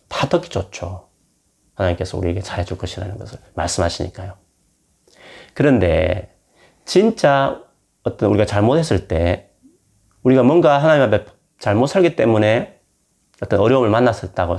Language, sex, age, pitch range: Korean, male, 30-49, 90-120 Hz